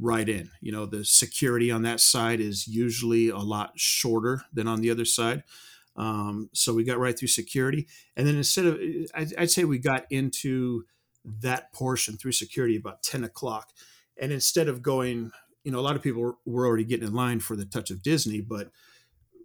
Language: English